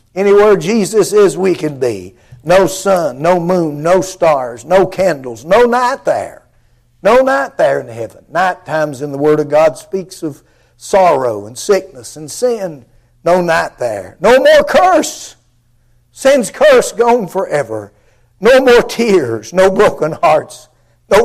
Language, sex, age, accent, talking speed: English, male, 60-79, American, 150 wpm